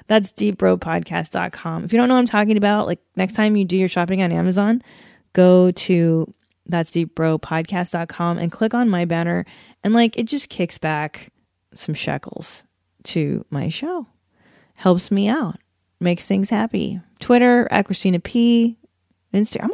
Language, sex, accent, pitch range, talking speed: English, female, American, 170-230 Hz, 150 wpm